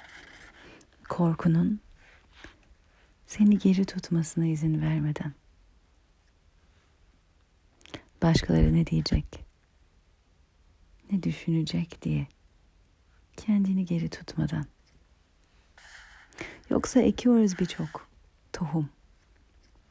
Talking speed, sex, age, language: 55 wpm, female, 40-59, Turkish